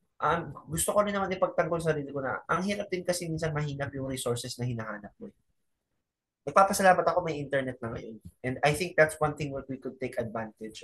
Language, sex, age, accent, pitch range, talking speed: Filipino, male, 20-39, native, 115-150 Hz, 215 wpm